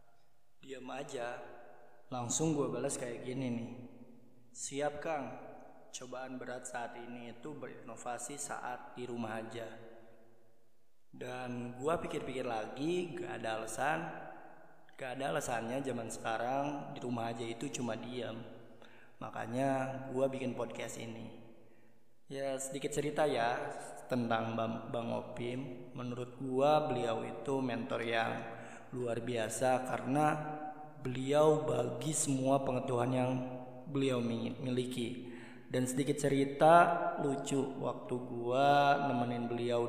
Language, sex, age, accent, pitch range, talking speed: Indonesian, male, 20-39, native, 120-135 Hz, 110 wpm